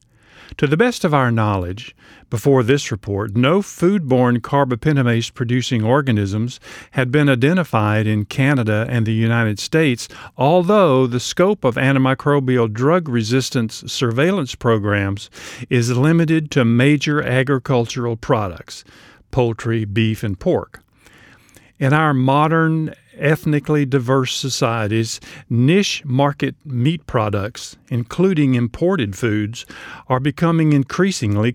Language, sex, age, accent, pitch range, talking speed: English, male, 50-69, American, 115-145 Hz, 110 wpm